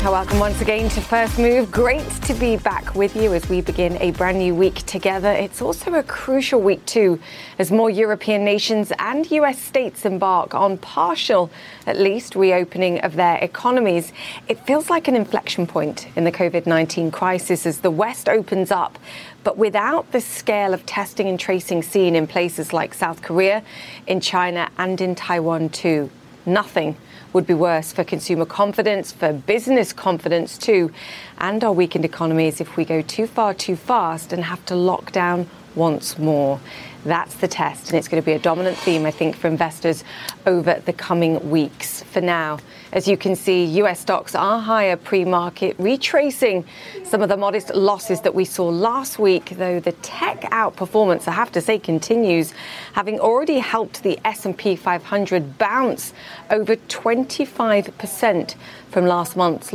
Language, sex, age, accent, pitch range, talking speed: English, female, 30-49, British, 170-215 Hz, 170 wpm